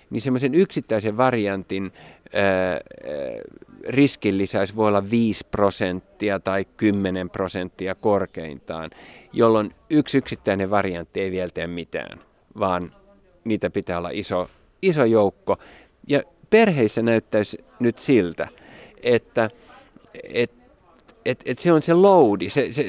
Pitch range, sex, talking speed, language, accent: 95-135 Hz, male, 125 wpm, Finnish, native